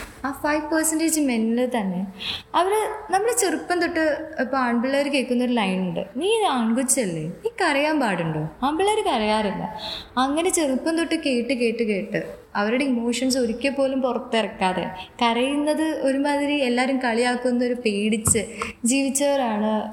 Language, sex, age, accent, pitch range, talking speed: Malayalam, female, 20-39, native, 225-300 Hz, 115 wpm